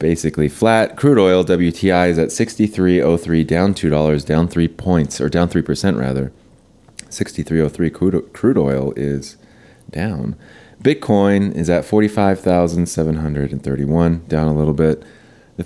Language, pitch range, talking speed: English, 80-100 Hz, 155 wpm